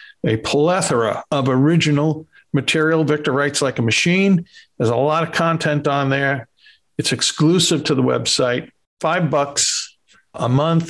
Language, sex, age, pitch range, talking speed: English, male, 50-69, 125-155 Hz, 145 wpm